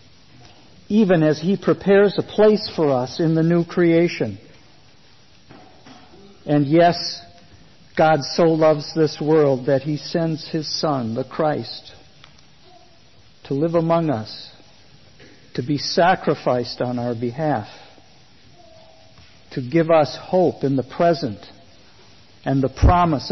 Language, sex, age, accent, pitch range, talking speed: English, male, 50-69, American, 130-170 Hz, 120 wpm